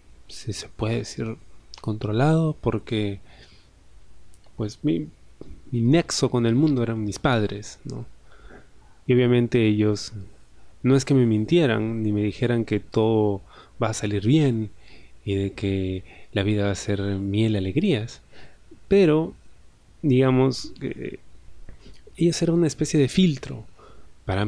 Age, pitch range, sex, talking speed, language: 20-39, 105-135 Hz, male, 135 wpm, Spanish